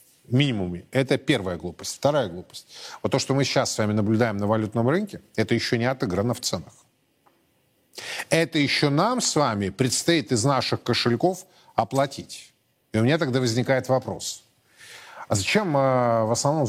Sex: male